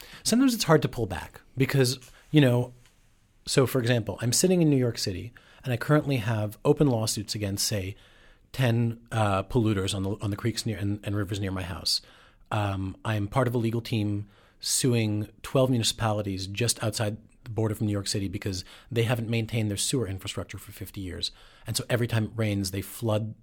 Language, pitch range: English, 100-120 Hz